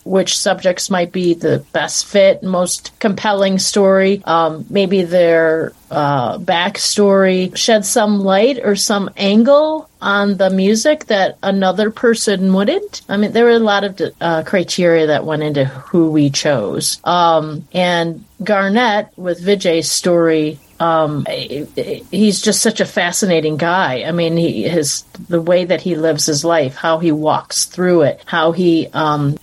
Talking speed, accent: 155 wpm, American